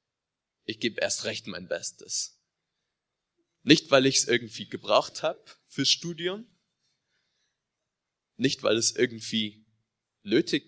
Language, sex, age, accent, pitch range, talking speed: German, male, 30-49, German, 110-140 Hz, 110 wpm